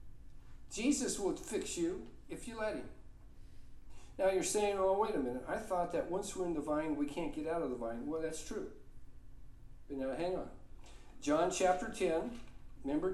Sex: male